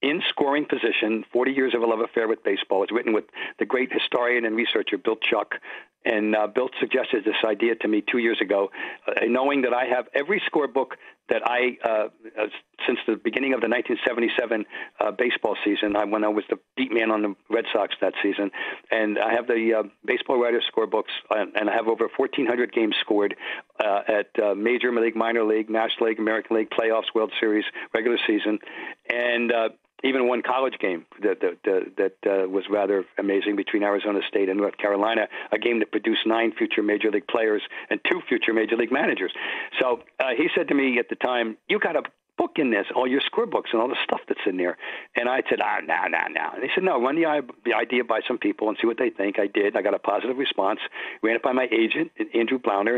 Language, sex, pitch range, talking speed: English, male, 105-125 Hz, 220 wpm